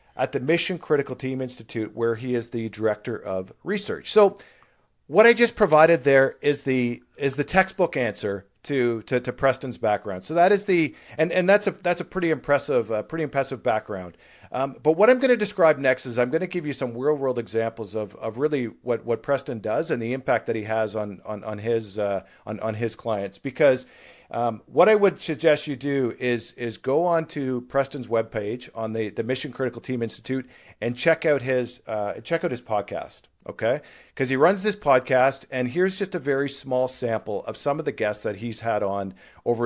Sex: male